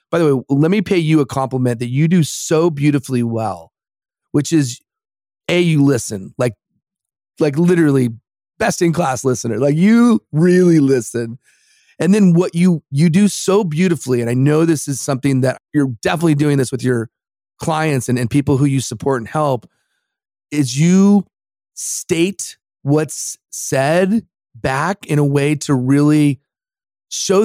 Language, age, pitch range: English, 30-49, 130-165 Hz